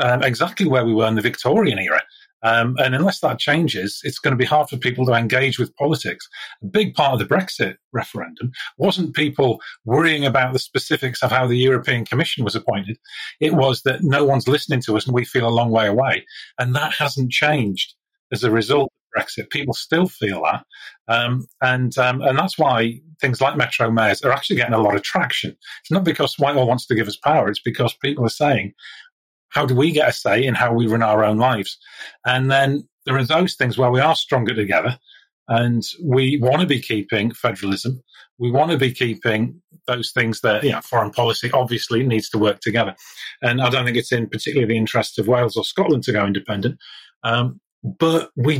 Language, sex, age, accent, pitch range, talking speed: English, male, 40-59, British, 115-145 Hz, 210 wpm